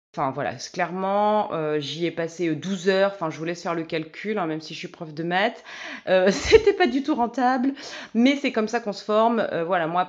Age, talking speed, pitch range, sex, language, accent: 30-49, 245 wpm, 170-215 Hz, female, French, French